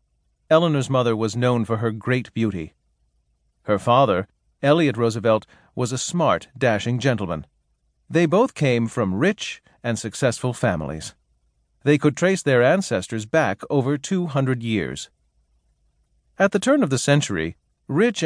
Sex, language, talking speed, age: male, English, 140 wpm, 40-59